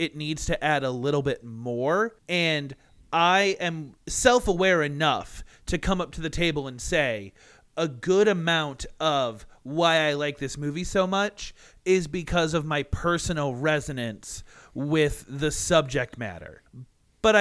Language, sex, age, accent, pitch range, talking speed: English, male, 30-49, American, 135-175 Hz, 150 wpm